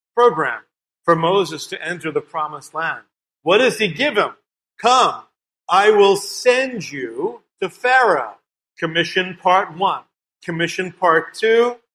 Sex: male